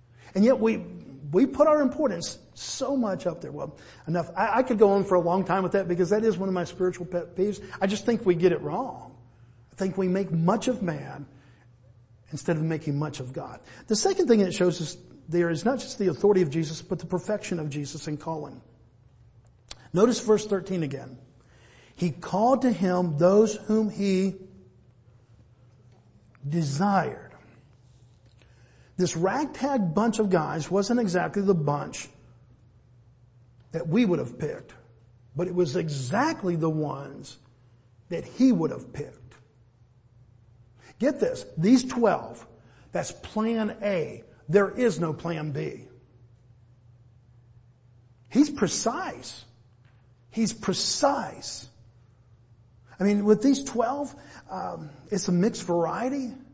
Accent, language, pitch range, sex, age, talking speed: American, English, 120-200 Hz, male, 50-69, 145 wpm